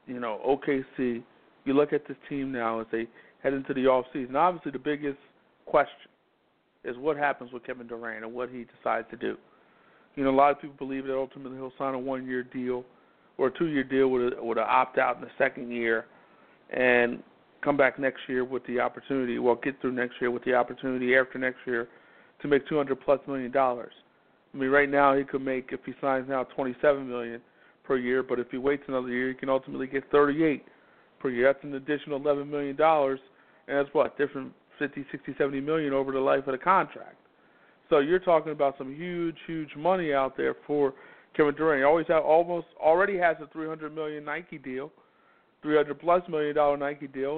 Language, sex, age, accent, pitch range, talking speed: English, male, 50-69, American, 130-150 Hz, 200 wpm